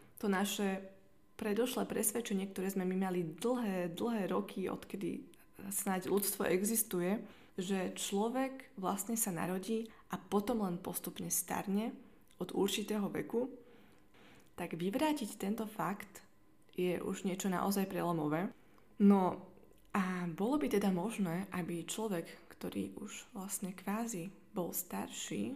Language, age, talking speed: Slovak, 20-39, 120 wpm